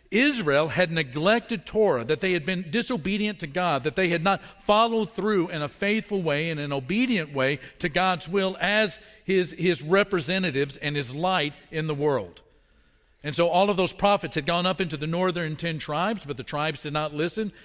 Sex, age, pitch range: male, 50-69, 150-190 Hz